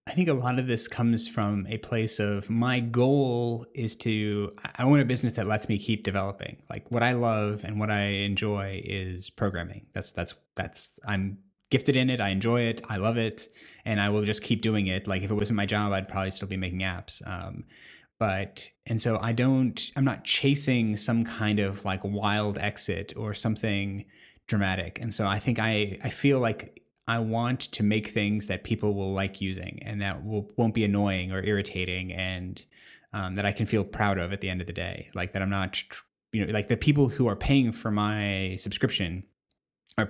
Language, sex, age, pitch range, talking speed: English, male, 30-49, 100-115 Hz, 210 wpm